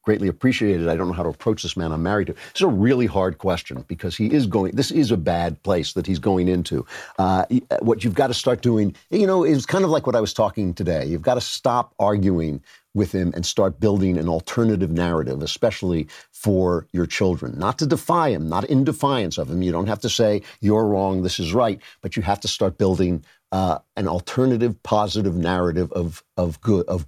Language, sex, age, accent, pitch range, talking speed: English, male, 50-69, American, 85-105 Hz, 220 wpm